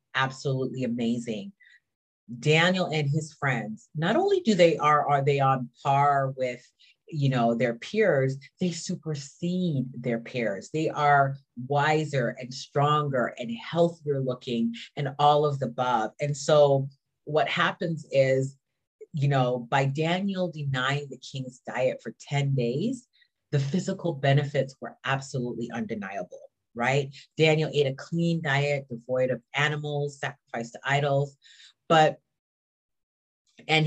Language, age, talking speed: English, 30-49, 130 wpm